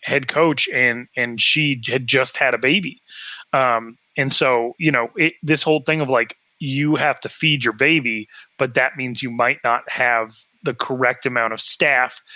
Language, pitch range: English, 120-155 Hz